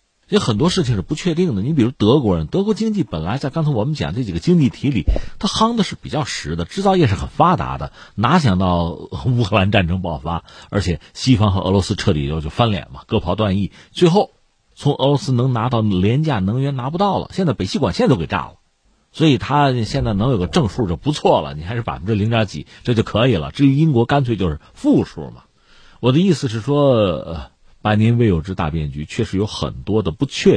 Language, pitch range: Chinese, 90-140 Hz